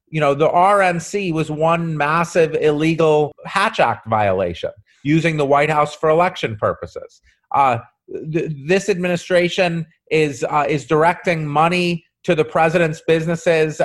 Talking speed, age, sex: 135 wpm, 30-49, male